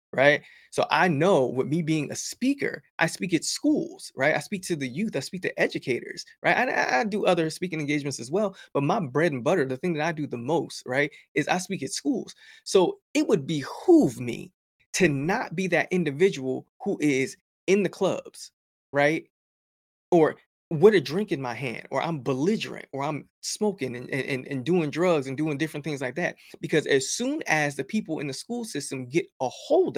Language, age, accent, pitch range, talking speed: English, 20-39, American, 150-240 Hz, 205 wpm